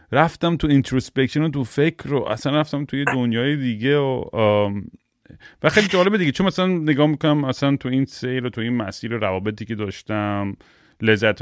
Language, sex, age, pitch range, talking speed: Persian, male, 30-49, 110-140 Hz, 180 wpm